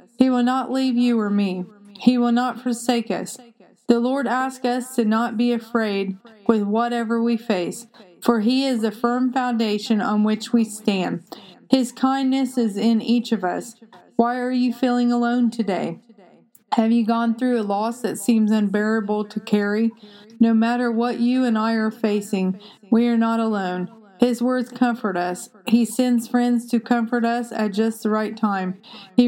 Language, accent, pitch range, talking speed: English, American, 215-240 Hz, 175 wpm